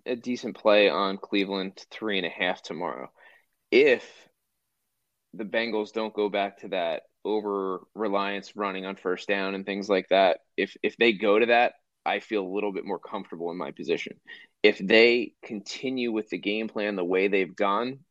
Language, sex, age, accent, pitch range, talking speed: English, male, 20-39, American, 100-125 Hz, 180 wpm